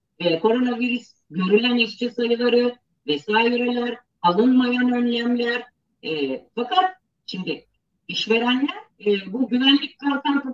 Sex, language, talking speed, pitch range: female, Turkish, 90 wpm, 195-275 Hz